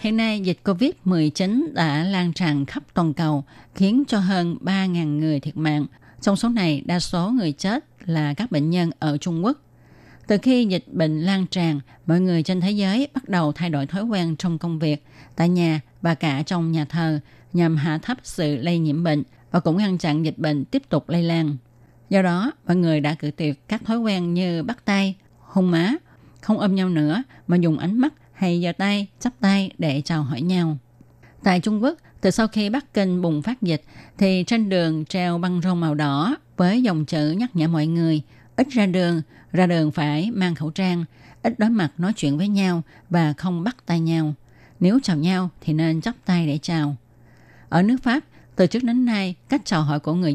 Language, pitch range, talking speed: Vietnamese, 155-200 Hz, 210 wpm